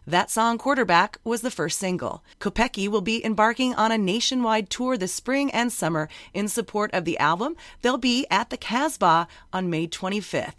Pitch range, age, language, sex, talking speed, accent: 175-235 Hz, 30-49, English, female, 180 wpm, American